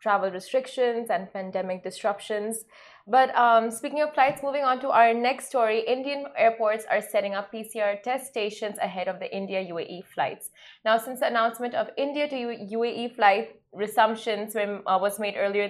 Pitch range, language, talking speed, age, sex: 200-240 Hz, Arabic, 160 wpm, 20-39, female